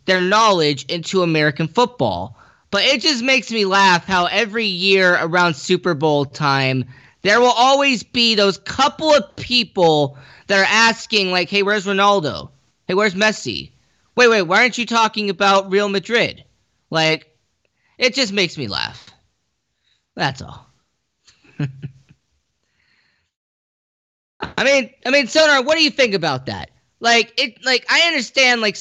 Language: English